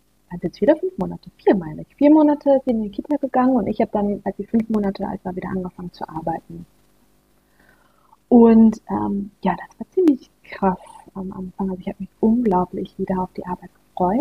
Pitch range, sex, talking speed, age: 185-215 Hz, female, 205 wpm, 30-49